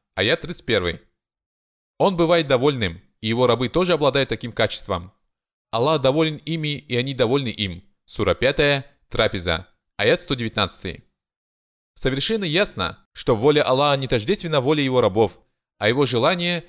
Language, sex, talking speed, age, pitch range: Russian, male, 135 wpm, 20-39, 105-160 Hz